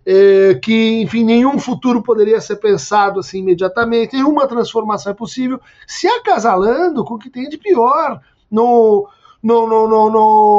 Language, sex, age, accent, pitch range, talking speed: Portuguese, male, 50-69, Brazilian, 205-280 Hz, 155 wpm